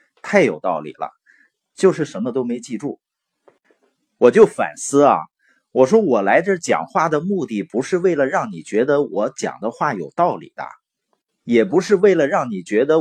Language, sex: Chinese, male